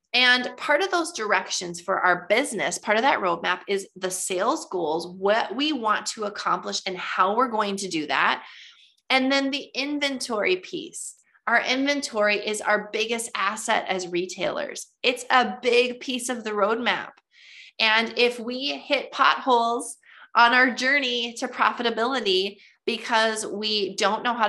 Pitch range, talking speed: 180-235 Hz, 155 wpm